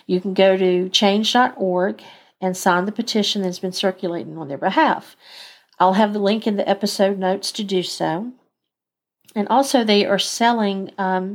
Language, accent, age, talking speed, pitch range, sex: English, American, 50-69, 170 wpm, 185-220 Hz, female